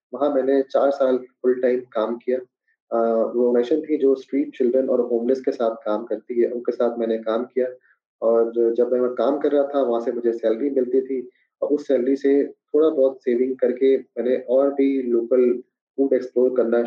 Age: 20-39